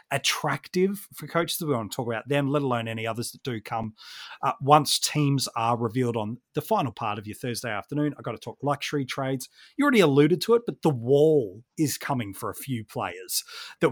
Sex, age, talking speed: male, 30-49, 220 wpm